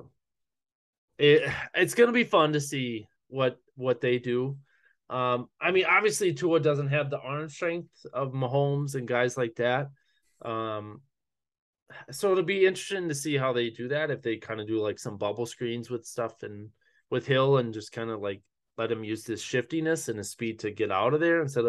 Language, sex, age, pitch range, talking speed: English, male, 20-39, 115-150 Hz, 195 wpm